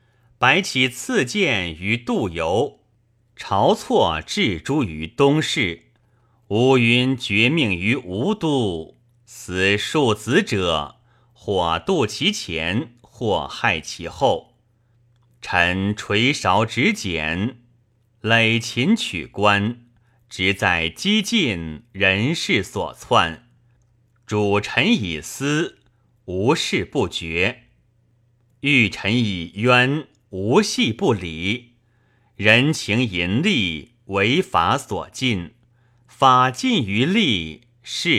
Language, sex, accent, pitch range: Chinese, male, native, 105-125 Hz